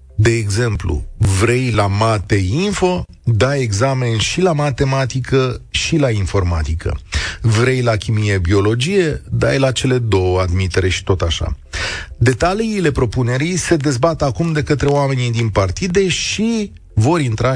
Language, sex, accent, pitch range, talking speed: Romanian, male, native, 100-140 Hz, 125 wpm